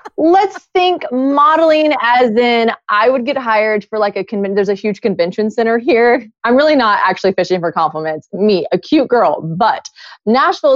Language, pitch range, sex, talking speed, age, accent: English, 175-220 Hz, female, 180 wpm, 20-39, American